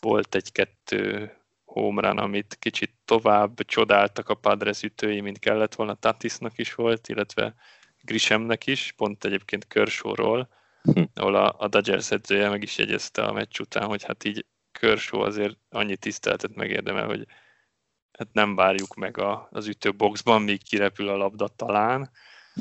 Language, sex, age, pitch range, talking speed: Hungarian, male, 20-39, 100-115 Hz, 145 wpm